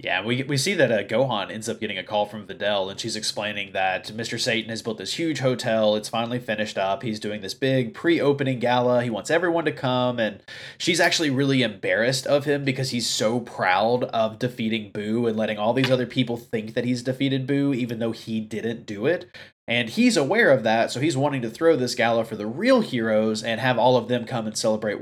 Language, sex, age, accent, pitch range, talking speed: English, male, 20-39, American, 110-135 Hz, 230 wpm